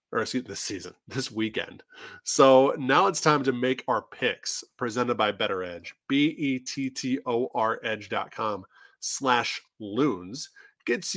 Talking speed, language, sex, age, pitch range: 125 wpm, English, male, 20-39, 125-175 Hz